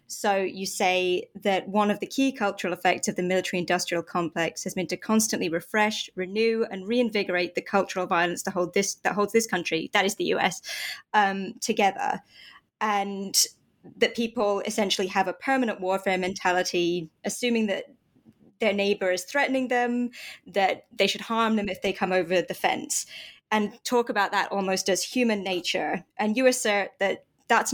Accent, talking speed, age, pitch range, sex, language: British, 165 wpm, 20-39, 185-225 Hz, female, English